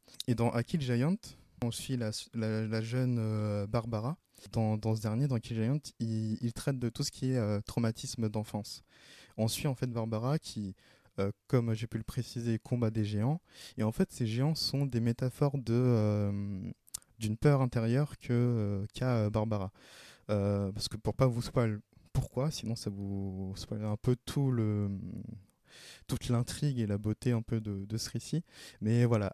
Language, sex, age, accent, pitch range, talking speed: French, male, 20-39, French, 105-125 Hz, 190 wpm